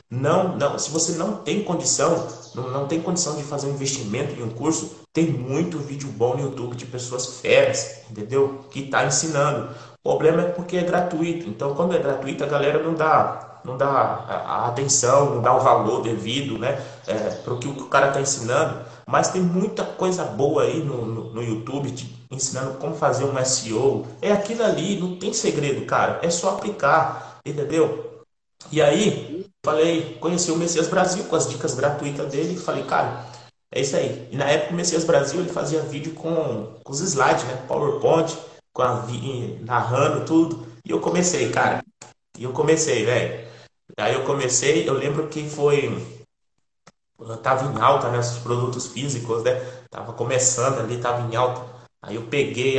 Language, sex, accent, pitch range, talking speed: Portuguese, male, Brazilian, 125-160 Hz, 175 wpm